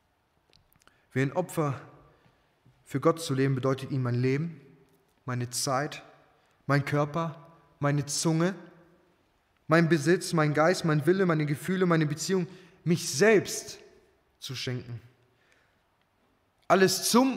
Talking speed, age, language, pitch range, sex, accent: 115 wpm, 20-39, German, 125-155 Hz, male, German